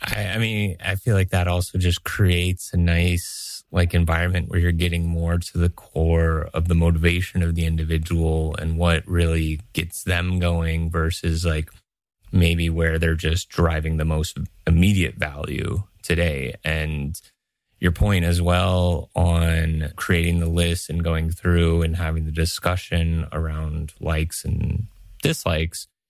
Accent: American